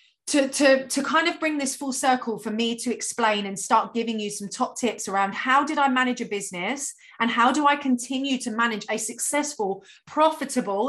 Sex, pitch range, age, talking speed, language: female, 215-265 Hz, 30-49, 200 wpm, English